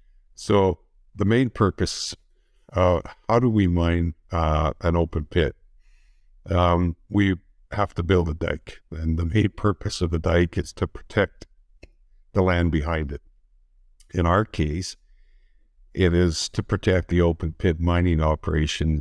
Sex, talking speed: male, 145 wpm